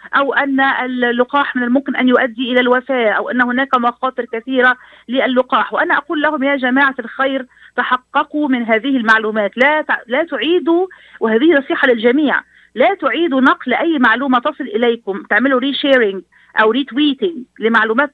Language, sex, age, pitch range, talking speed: Arabic, female, 40-59, 235-285 Hz, 150 wpm